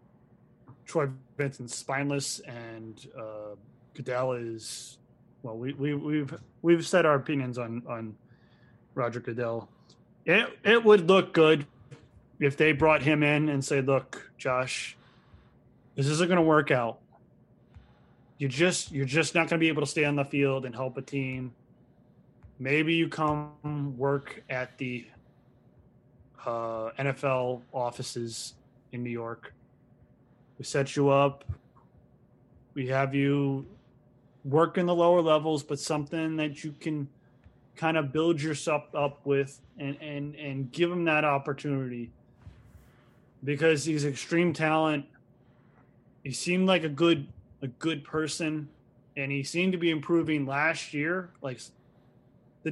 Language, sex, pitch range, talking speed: English, male, 125-155 Hz, 135 wpm